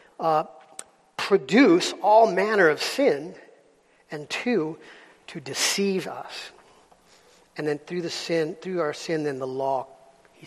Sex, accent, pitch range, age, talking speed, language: male, American, 145-170 Hz, 50-69, 120 wpm, English